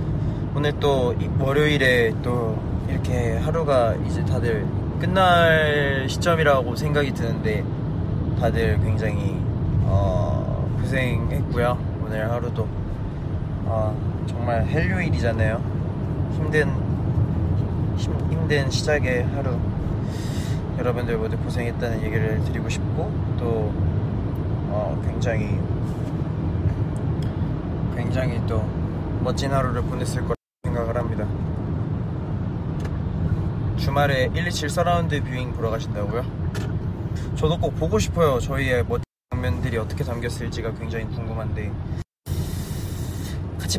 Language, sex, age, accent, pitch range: Korean, male, 20-39, native, 95-125 Hz